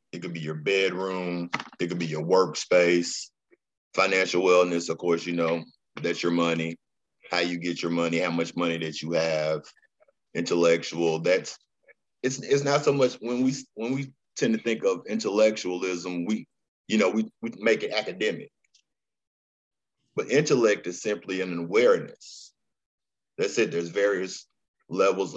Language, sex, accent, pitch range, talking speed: English, male, American, 85-105 Hz, 155 wpm